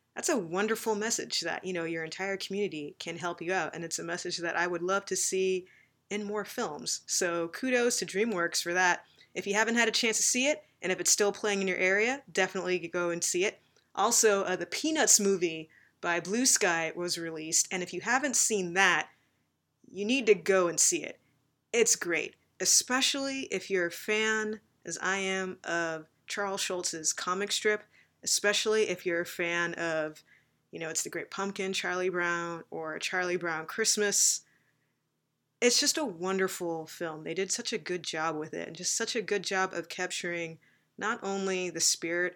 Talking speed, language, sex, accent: 195 wpm, English, female, American